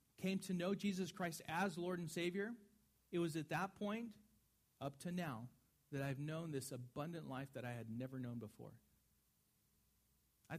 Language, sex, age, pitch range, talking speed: English, male, 40-59, 120-170 Hz, 170 wpm